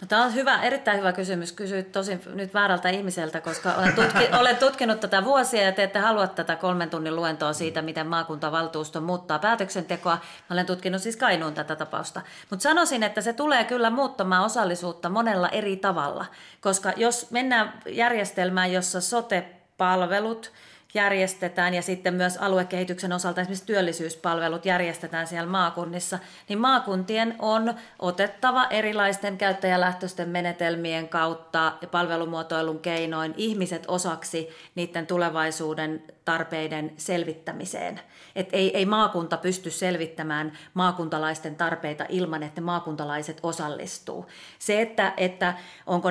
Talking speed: 125 wpm